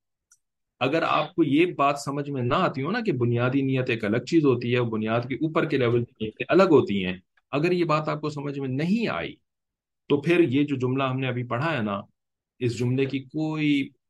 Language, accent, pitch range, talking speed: English, Indian, 120-165 Hz, 205 wpm